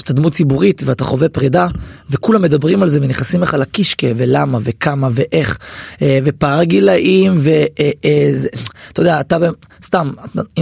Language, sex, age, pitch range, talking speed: Hebrew, male, 20-39, 135-185 Hz, 130 wpm